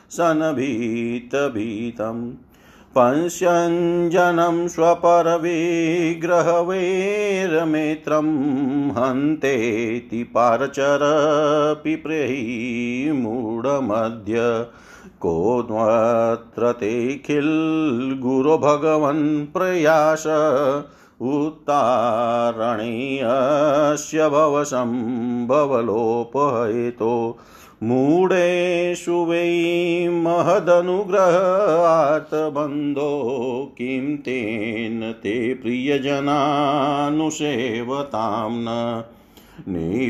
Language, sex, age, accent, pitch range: Hindi, male, 50-69, native, 120-160 Hz